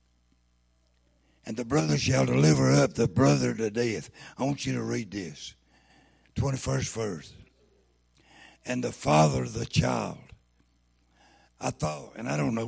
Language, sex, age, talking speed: English, male, 60-79, 140 wpm